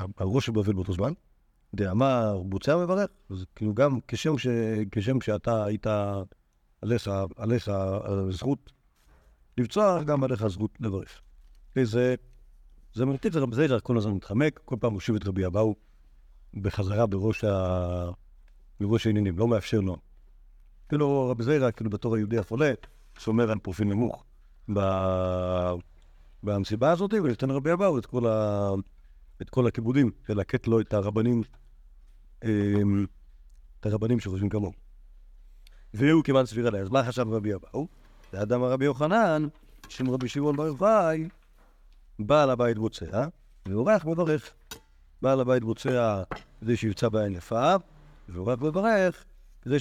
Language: Hebrew